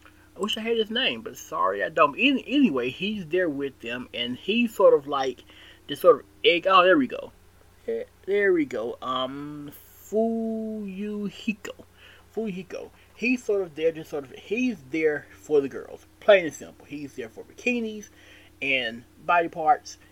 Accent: American